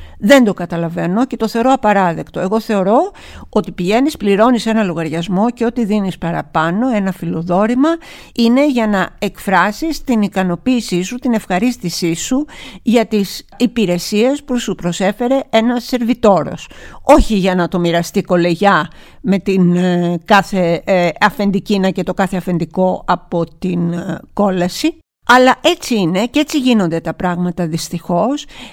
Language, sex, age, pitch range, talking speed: Greek, female, 50-69, 175-240 Hz, 135 wpm